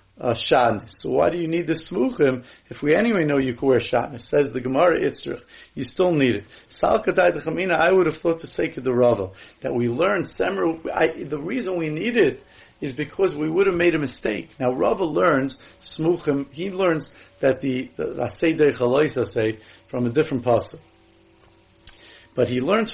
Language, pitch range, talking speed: English, 125-170 Hz, 180 wpm